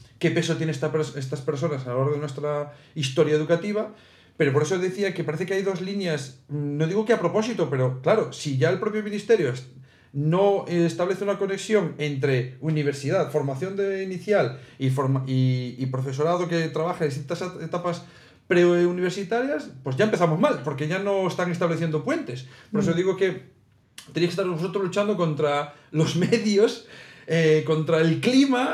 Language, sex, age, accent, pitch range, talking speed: Spanish, male, 40-59, Spanish, 145-190 Hz, 170 wpm